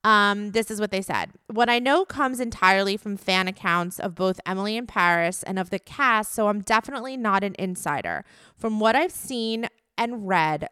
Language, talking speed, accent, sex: English, 195 wpm, American, female